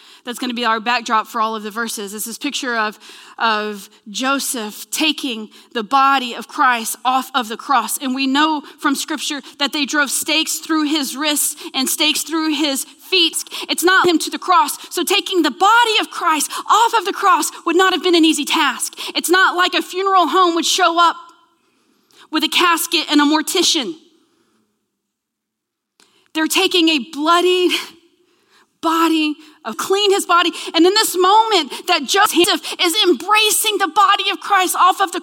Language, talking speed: English, 175 wpm